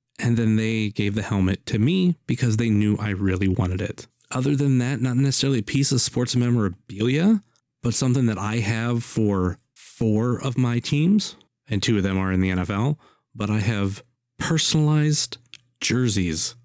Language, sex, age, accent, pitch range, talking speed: English, male, 30-49, American, 100-125 Hz, 175 wpm